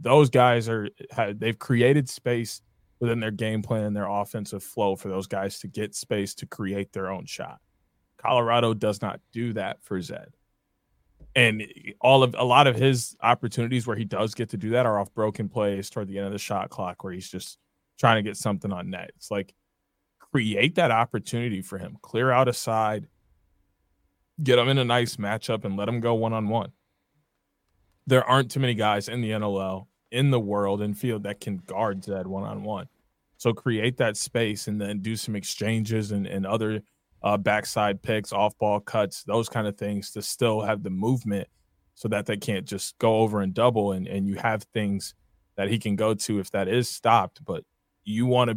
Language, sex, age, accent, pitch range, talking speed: English, male, 20-39, American, 100-120 Hz, 200 wpm